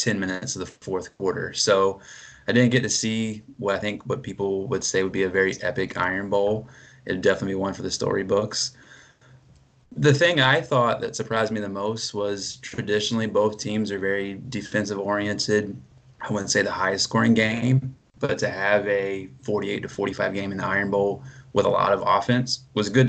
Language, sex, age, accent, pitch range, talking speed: English, male, 20-39, American, 100-125 Hz, 200 wpm